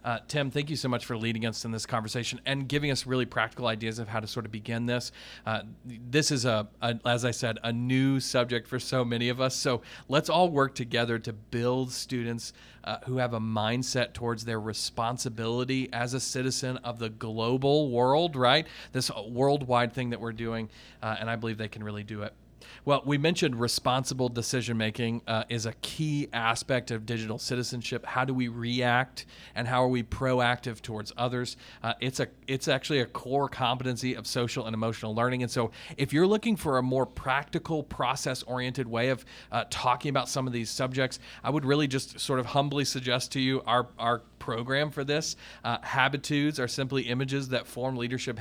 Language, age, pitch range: English, 40-59, 115-130 Hz